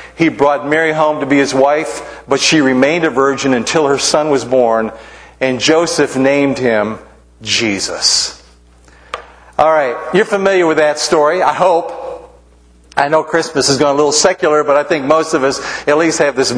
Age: 50-69